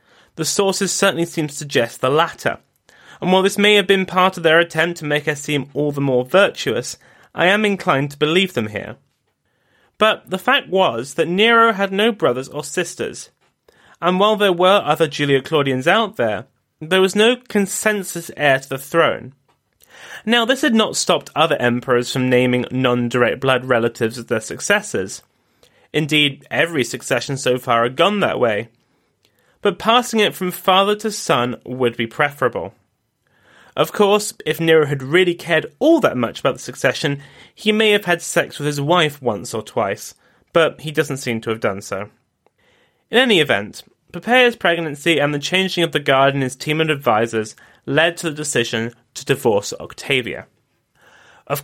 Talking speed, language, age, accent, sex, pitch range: 175 wpm, English, 30-49, British, male, 135-195 Hz